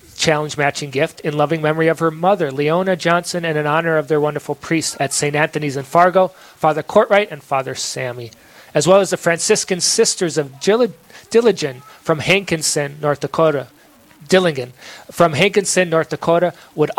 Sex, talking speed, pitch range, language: male, 165 wpm, 150-180 Hz, English